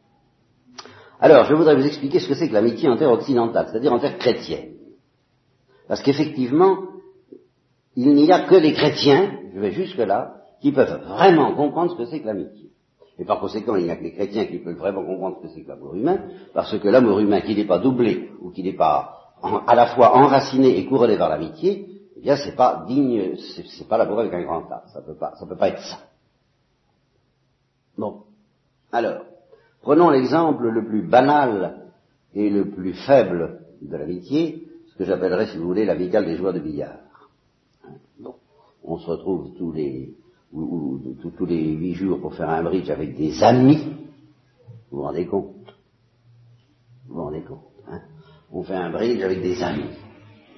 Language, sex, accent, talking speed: French, male, French, 185 wpm